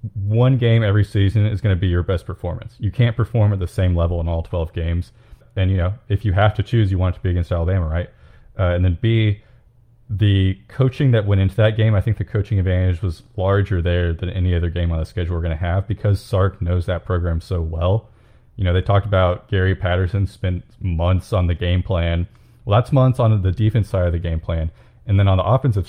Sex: male